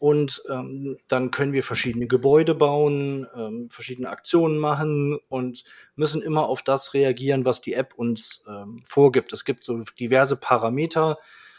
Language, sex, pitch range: German, male, 125-150 Hz